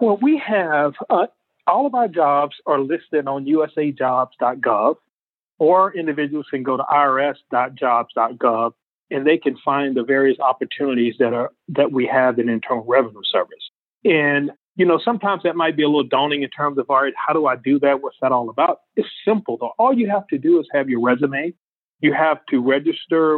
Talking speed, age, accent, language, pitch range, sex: 190 wpm, 40-59, American, English, 135-195 Hz, male